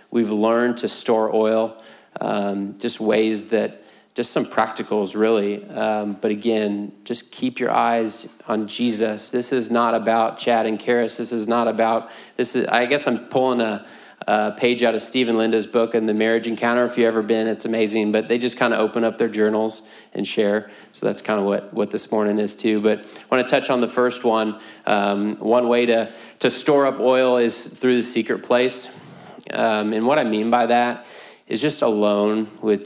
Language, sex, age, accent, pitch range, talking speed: English, male, 30-49, American, 105-120 Hz, 200 wpm